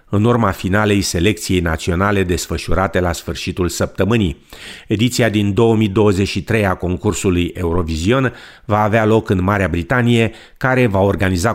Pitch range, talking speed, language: 90-110 Hz, 125 wpm, Romanian